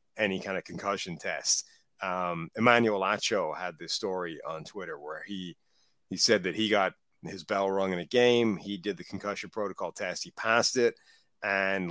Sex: male